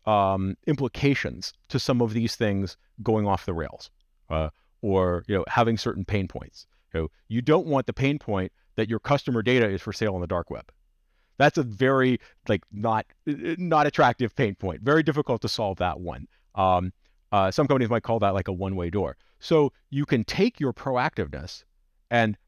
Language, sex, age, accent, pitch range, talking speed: English, male, 40-59, American, 90-130 Hz, 185 wpm